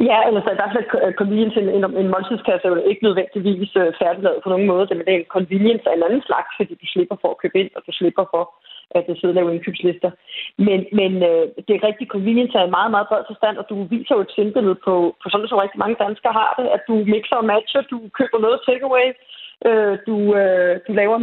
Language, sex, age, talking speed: Danish, female, 30-49, 245 wpm